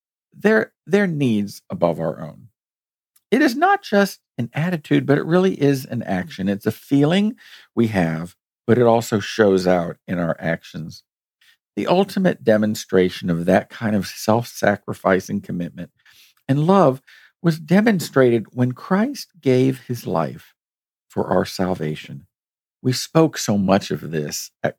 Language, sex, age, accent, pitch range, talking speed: English, male, 50-69, American, 95-155 Hz, 145 wpm